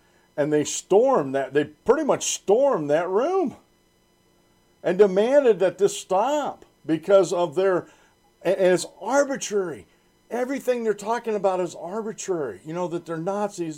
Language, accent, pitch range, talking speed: English, American, 175-235 Hz, 135 wpm